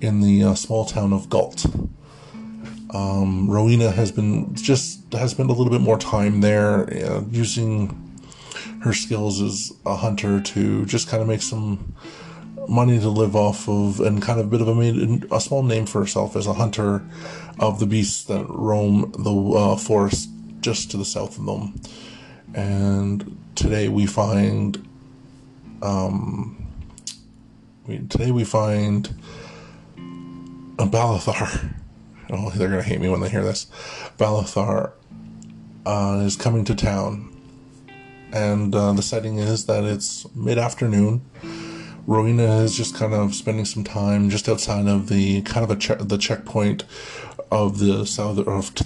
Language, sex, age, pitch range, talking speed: English, male, 20-39, 100-115 Hz, 150 wpm